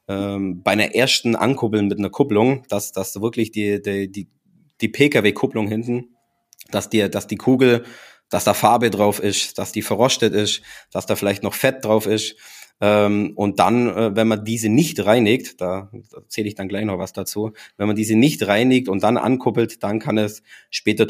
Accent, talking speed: German, 180 wpm